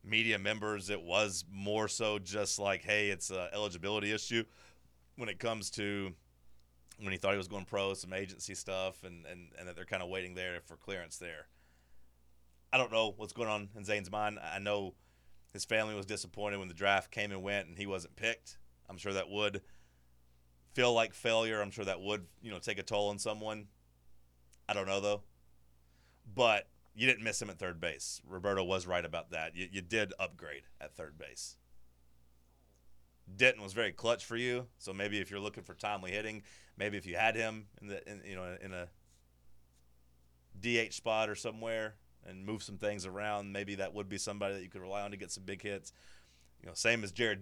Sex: male